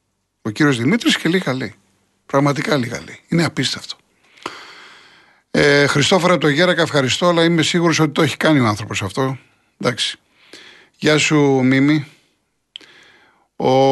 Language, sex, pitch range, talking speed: Greek, male, 115-135 Hz, 130 wpm